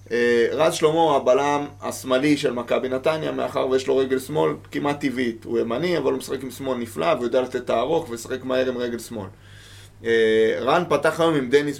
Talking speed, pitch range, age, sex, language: 205 wpm, 105-130 Hz, 20-39, male, Hebrew